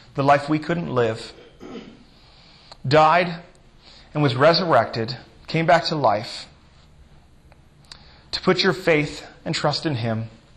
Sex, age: male, 30-49